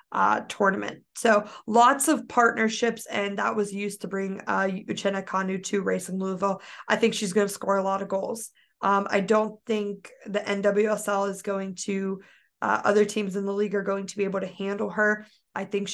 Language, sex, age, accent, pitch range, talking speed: English, female, 20-39, American, 190-210 Hz, 205 wpm